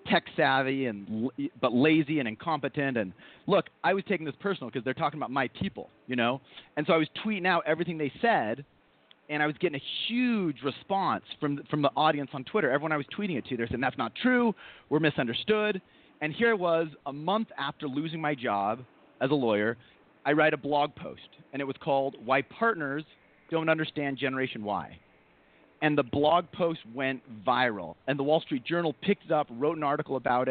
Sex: male